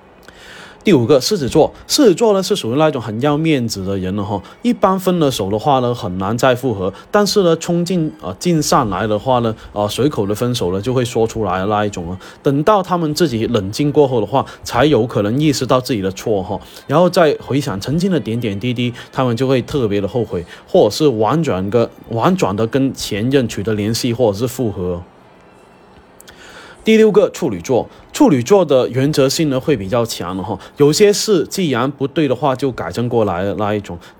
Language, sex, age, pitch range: Chinese, male, 20-39, 105-150 Hz